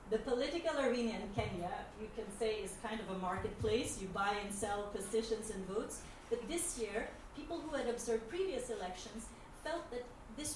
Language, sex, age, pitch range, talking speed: English, female, 40-59, 205-245 Hz, 180 wpm